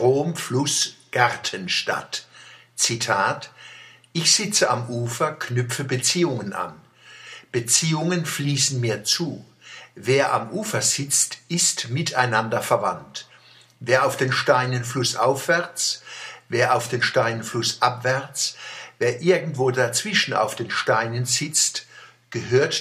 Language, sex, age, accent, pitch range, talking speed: German, male, 60-79, German, 115-135 Hz, 105 wpm